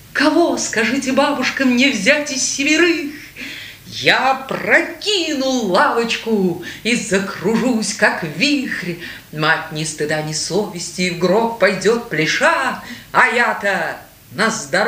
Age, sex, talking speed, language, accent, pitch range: 30-49, female, 105 wpm, Russian, native, 170-245 Hz